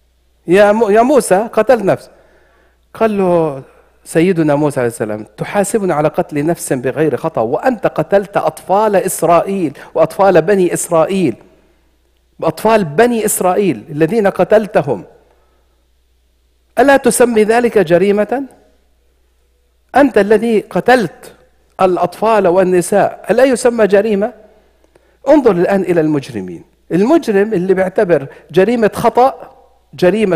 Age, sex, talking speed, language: 50-69, male, 95 wpm, English